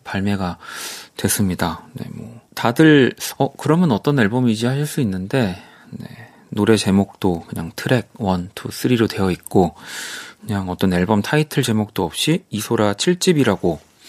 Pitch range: 100-130 Hz